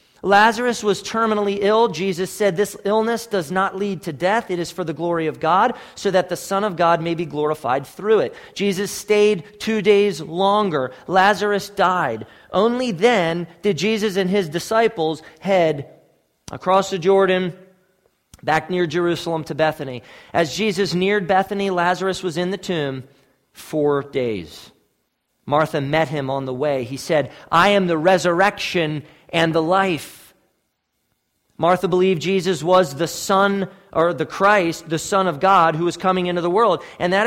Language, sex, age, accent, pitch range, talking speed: English, male, 40-59, American, 160-205 Hz, 165 wpm